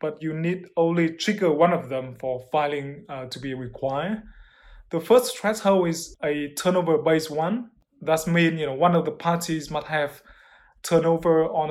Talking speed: 170 wpm